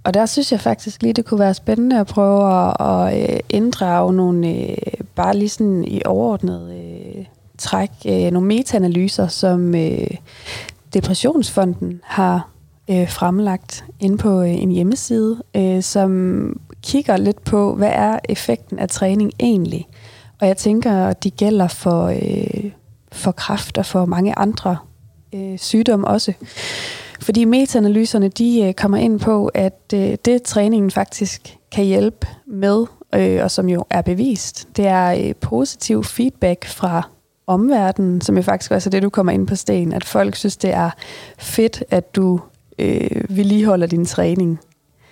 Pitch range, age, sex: 175-210 Hz, 20-39, female